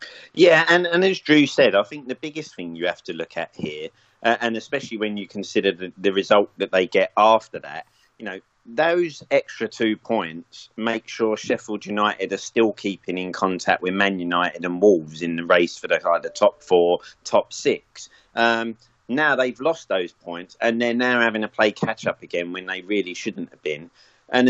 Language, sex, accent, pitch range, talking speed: English, male, British, 95-125 Hz, 200 wpm